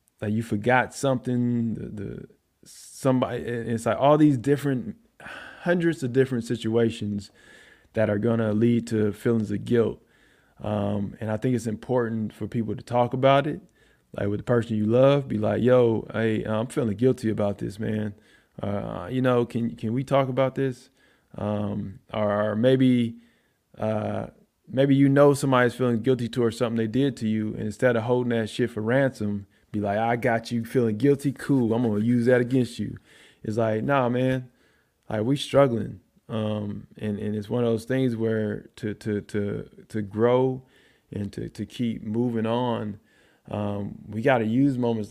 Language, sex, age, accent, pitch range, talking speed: English, male, 20-39, American, 105-125 Hz, 180 wpm